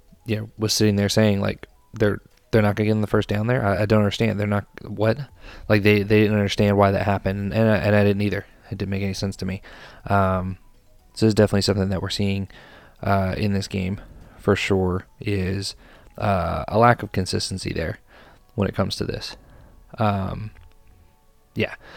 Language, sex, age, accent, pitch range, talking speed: English, male, 20-39, American, 95-105 Hz, 195 wpm